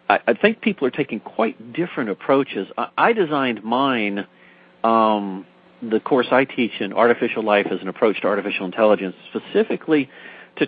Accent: American